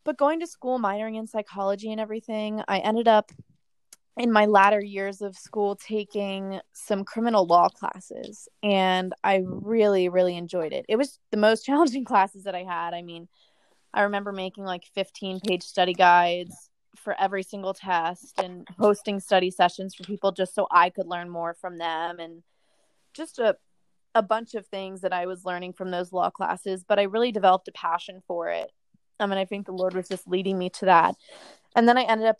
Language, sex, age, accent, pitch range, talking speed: English, female, 20-39, American, 185-215 Hz, 195 wpm